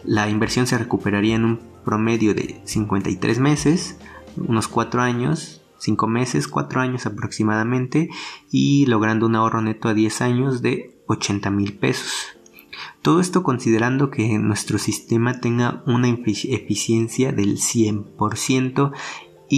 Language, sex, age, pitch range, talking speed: Spanish, male, 30-49, 105-125 Hz, 125 wpm